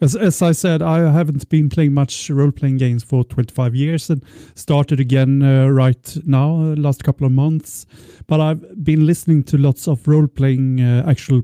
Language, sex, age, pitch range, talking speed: Swedish, male, 30-49, 125-155 Hz, 195 wpm